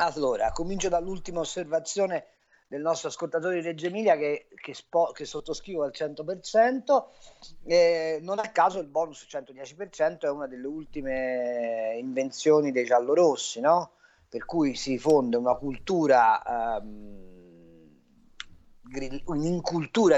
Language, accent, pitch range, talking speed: Italian, native, 135-190 Hz, 115 wpm